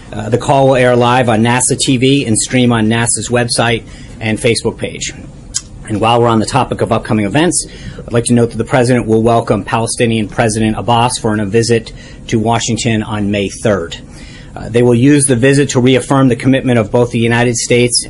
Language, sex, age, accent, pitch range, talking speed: English, male, 40-59, American, 110-130 Hz, 200 wpm